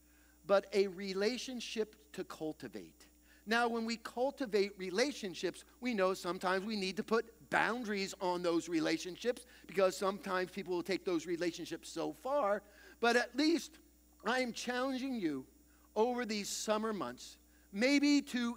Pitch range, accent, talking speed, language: 200-275 Hz, American, 140 wpm, English